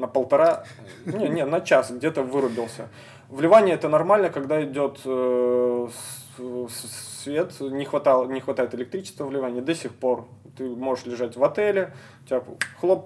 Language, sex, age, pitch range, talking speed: Russian, male, 20-39, 125-150 Hz, 140 wpm